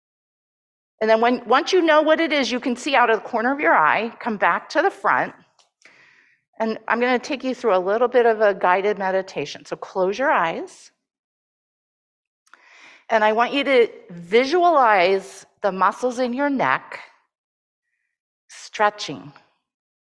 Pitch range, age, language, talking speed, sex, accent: 200-280 Hz, 50-69, English, 160 wpm, female, American